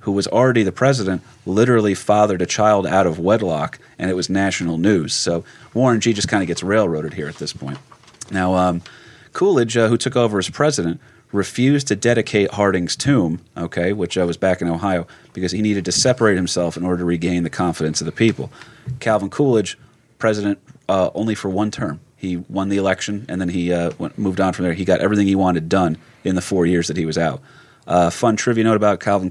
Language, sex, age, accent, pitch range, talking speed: English, male, 30-49, American, 85-105 Hz, 215 wpm